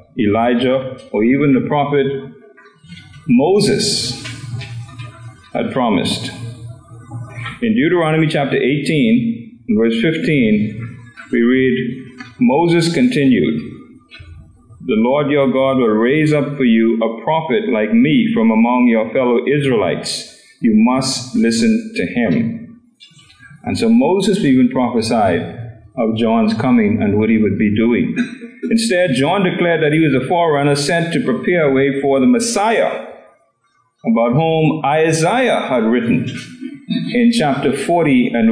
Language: English